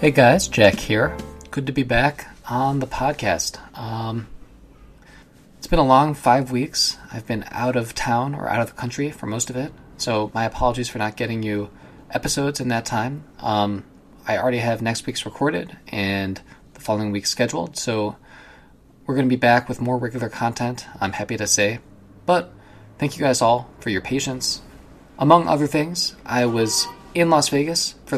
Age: 20-39